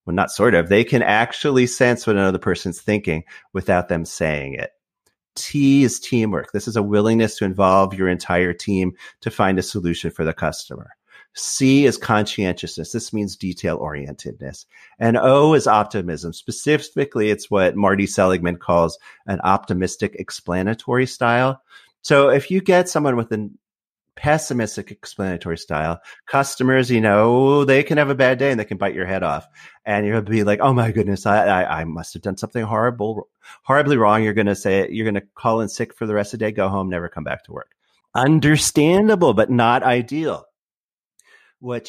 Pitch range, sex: 95-130 Hz, male